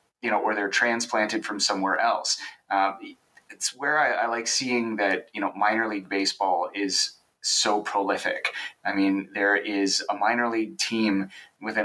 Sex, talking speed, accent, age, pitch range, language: male, 165 wpm, American, 30-49, 95-115 Hz, English